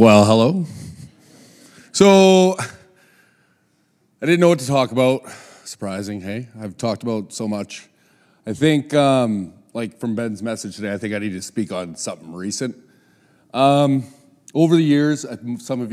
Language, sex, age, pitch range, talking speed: English, male, 30-49, 100-140 Hz, 150 wpm